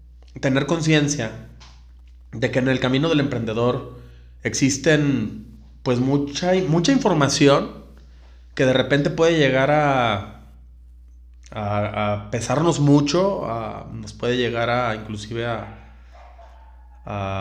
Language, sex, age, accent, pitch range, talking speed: Spanish, male, 30-49, Mexican, 105-145 Hz, 110 wpm